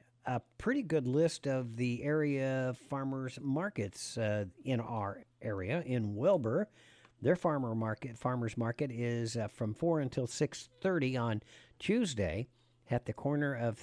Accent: American